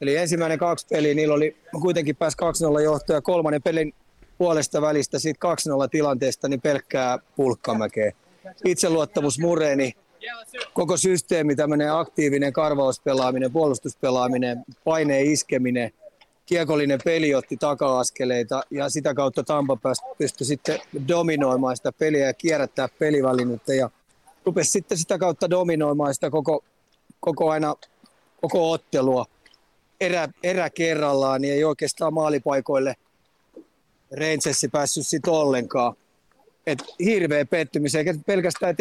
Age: 30-49